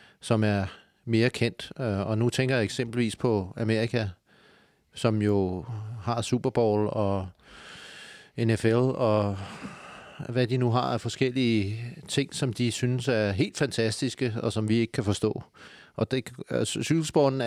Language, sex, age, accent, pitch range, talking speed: Danish, male, 30-49, native, 105-125 Hz, 135 wpm